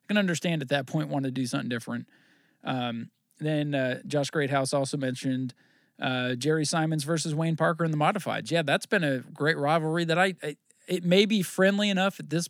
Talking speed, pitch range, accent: 195 wpm, 130-155 Hz, American